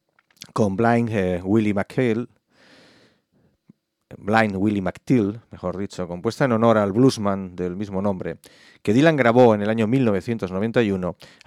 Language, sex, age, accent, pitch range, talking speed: English, male, 40-59, Spanish, 95-115 Hz, 130 wpm